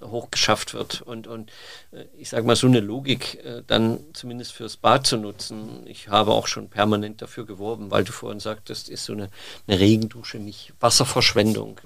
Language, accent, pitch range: German, German, 110-125 Hz